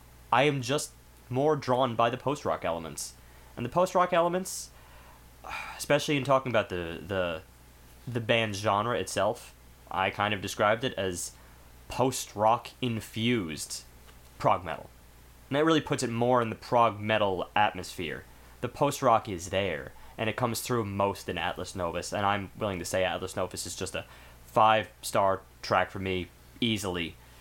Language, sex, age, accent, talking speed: English, male, 20-39, American, 155 wpm